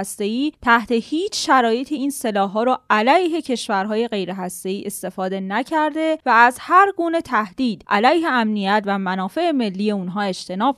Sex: female